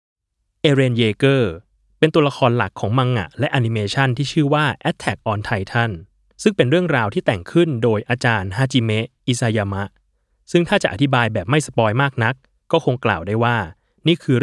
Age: 20-39